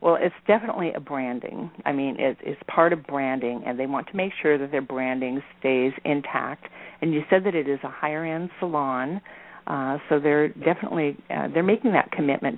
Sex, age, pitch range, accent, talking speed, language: female, 50-69, 140-170 Hz, American, 195 wpm, English